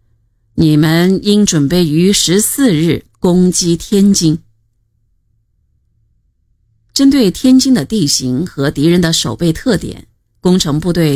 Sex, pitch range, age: female, 145-210 Hz, 50-69